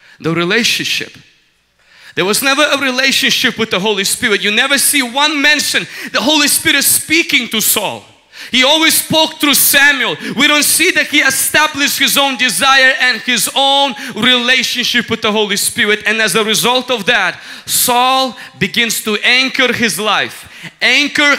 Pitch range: 230-290 Hz